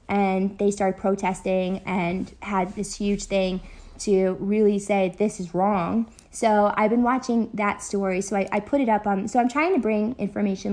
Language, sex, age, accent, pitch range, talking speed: English, female, 20-39, American, 190-235 Hz, 190 wpm